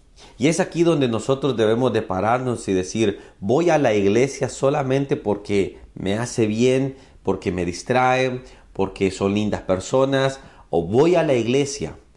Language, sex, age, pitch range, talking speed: Spanish, male, 40-59, 100-140 Hz, 155 wpm